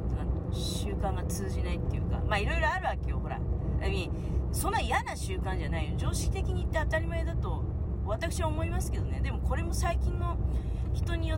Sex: female